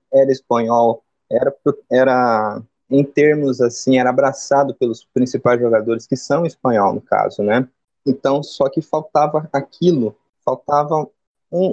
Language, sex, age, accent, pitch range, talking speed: Portuguese, male, 20-39, Brazilian, 125-155 Hz, 130 wpm